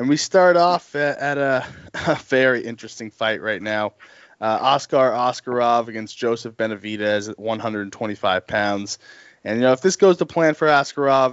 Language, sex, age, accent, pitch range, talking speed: English, male, 20-39, American, 115-140 Hz, 165 wpm